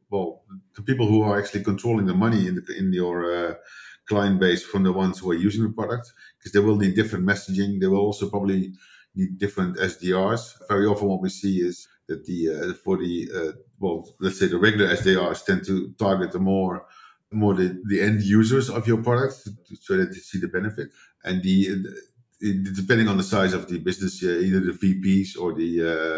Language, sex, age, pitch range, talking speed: English, male, 50-69, 95-105 Hz, 210 wpm